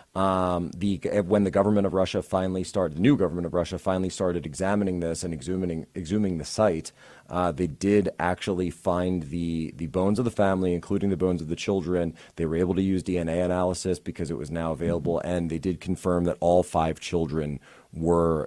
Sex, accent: male, American